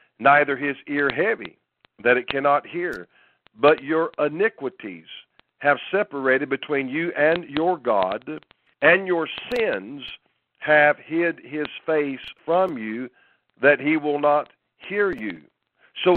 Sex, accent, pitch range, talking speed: male, American, 135-165 Hz, 125 wpm